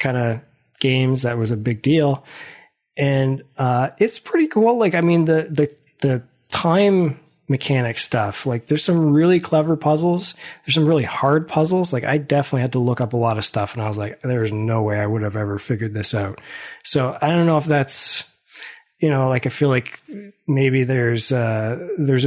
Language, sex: English, male